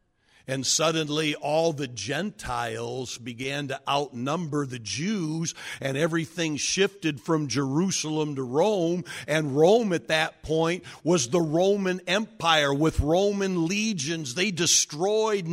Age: 50-69